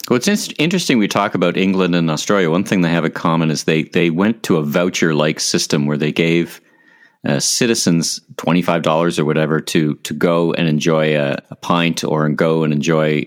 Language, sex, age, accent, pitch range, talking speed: English, male, 40-59, American, 75-90 Hz, 195 wpm